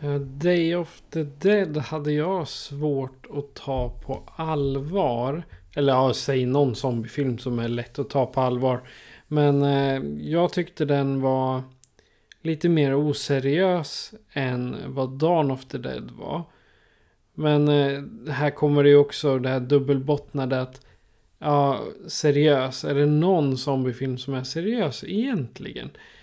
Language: Swedish